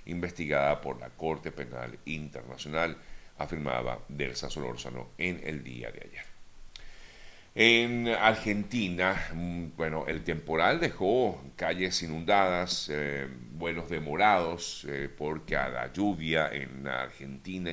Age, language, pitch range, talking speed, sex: 50-69, Spanish, 70-85 Hz, 110 wpm, male